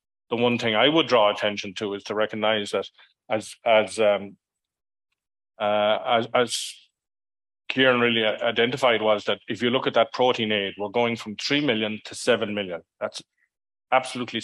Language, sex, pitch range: English, male, 105-115 Hz